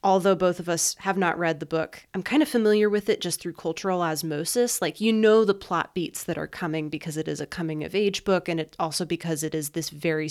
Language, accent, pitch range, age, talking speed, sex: English, American, 170-210 Hz, 20-39, 255 wpm, female